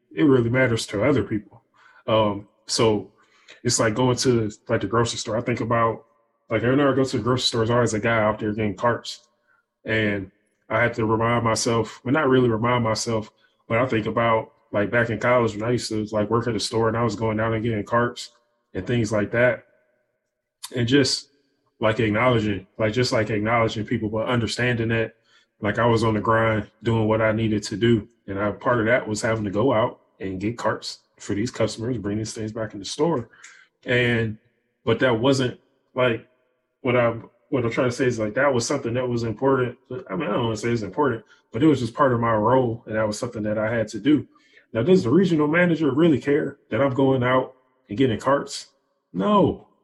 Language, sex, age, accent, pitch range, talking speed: English, male, 20-39, American, 110-125 Hz, 225 wpm